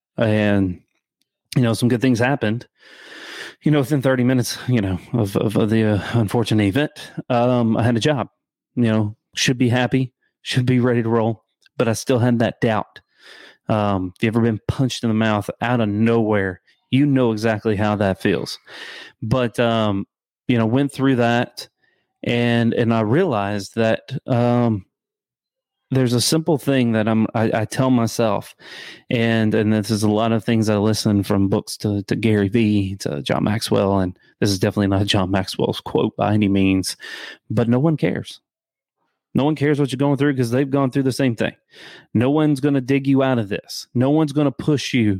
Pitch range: 110-130 Hz